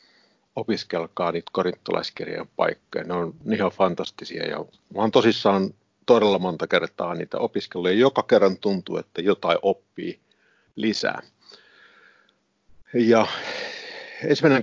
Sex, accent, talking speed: male, native, 95 wpm